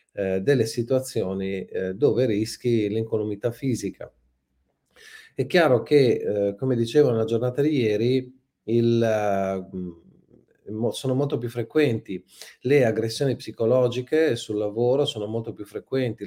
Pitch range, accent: 100-125 Hz, native